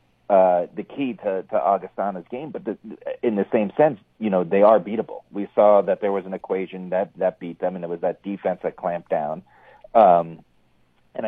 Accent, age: American, 40-59